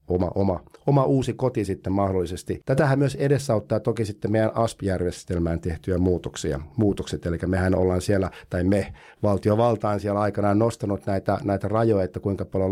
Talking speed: 155 wpm